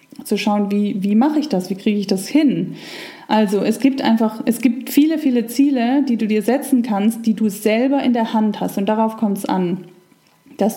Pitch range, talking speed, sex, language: 205-255 Hz, 215 wpm, female, German